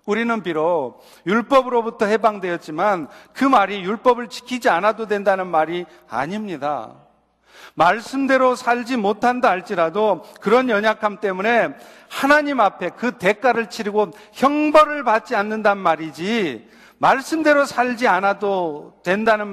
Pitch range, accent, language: 195-245 Hz, native, Korean